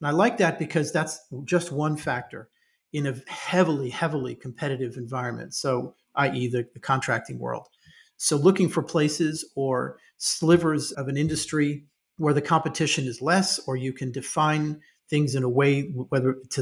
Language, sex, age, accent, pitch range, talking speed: English, male, 40-59, American, 130-165 Hz, 165 wpm